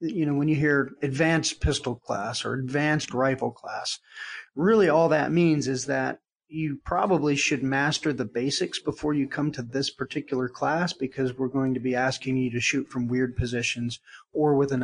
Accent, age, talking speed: American, 40-59, 185 wpm